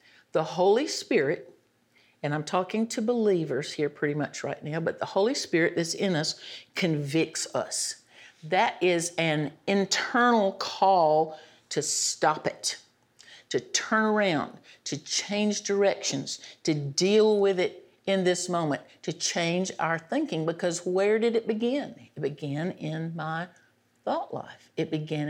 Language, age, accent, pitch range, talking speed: English, 50-69, American, 160-210 Hz, 145 wpm